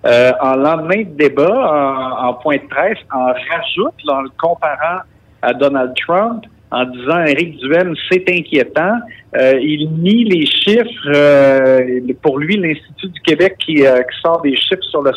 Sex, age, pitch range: male, 50-69, 130-180 Hz